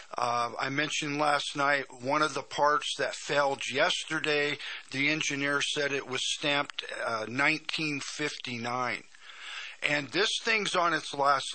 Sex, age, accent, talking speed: male, 50-69, American, 135 wpm